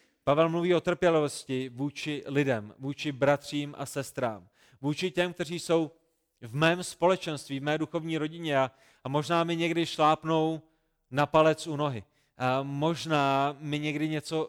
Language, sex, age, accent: Czech, male, 30-49, native